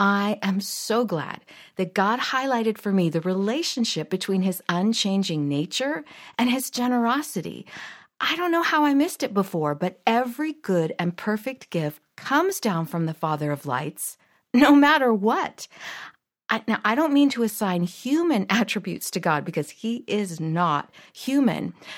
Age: 50-69